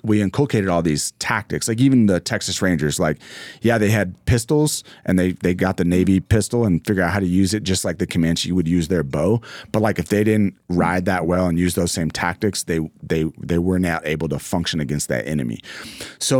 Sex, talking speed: male, 225 wpm